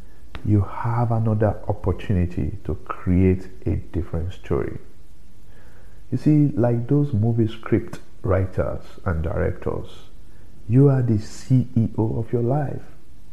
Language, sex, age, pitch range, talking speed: English, male, 50-69, 90-115 Hz, 115 wpm